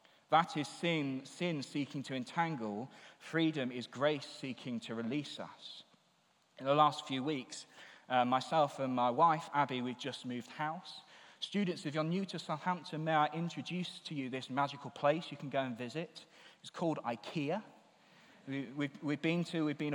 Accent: British